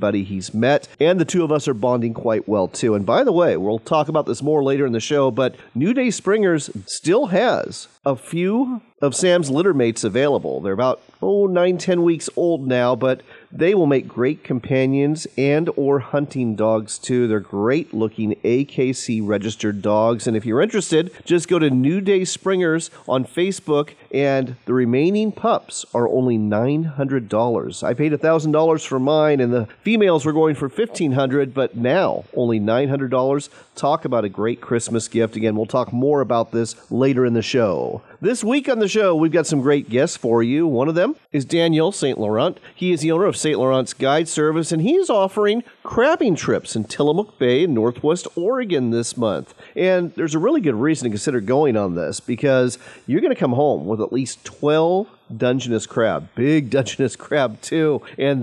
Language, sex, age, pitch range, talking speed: English, male, 40-59, 120-165 Hz, 185 wpm